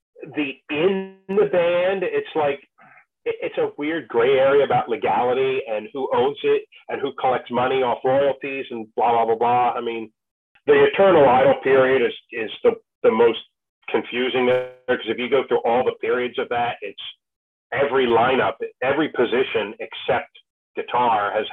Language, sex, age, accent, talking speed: English, male, 40-59, American, 160 wpm